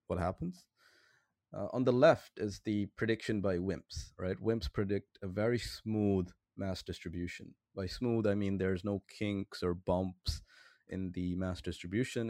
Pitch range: 95-115 Hz